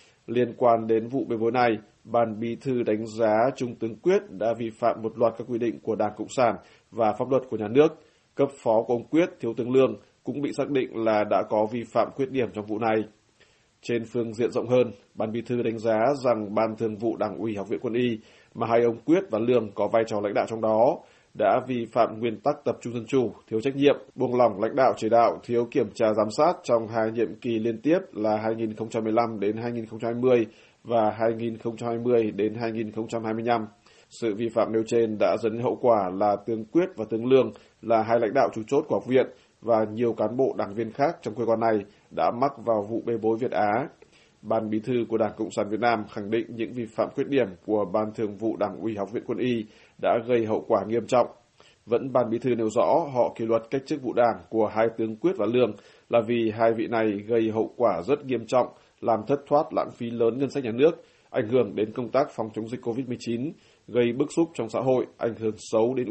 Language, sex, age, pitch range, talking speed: Vietnamese, male, 20-39, 110-120 Hz, 235 wpm